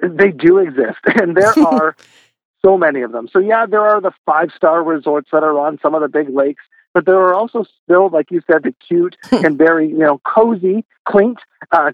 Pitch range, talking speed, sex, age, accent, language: 145-185 Hz, 210 wpm, male, 50-69, American, English